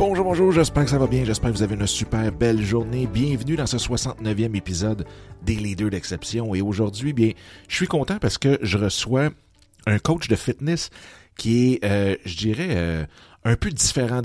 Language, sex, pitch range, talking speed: French, male, 95-125 Hz, 195 wpm